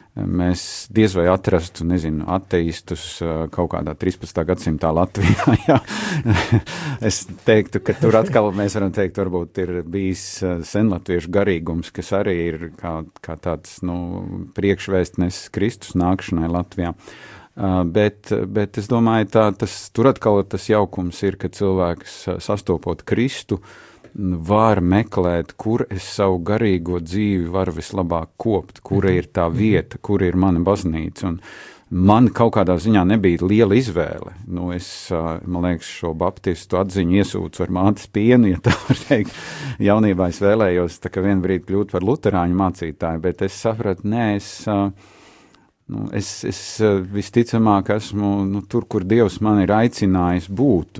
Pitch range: 90-105 Hz